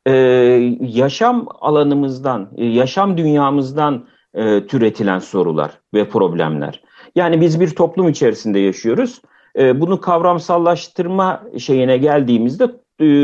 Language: Turkish